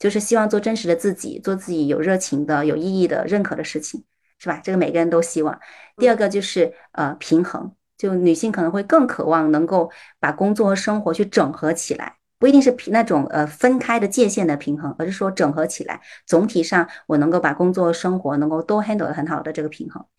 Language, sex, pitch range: Chinese, female, 165-215 Hz